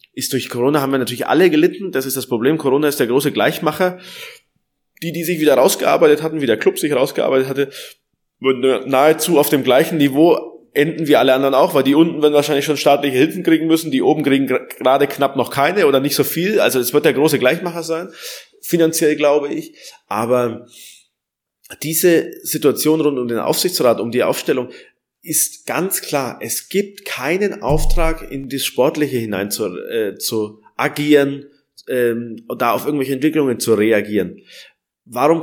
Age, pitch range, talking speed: 20-39, 130-165 Hz, 175 wpm